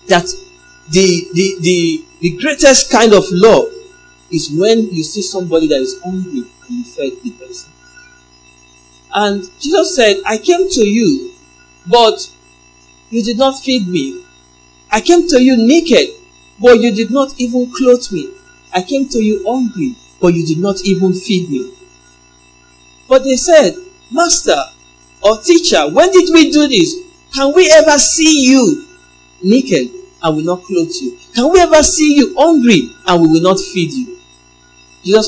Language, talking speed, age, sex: English, 160 wpm, 50-69, male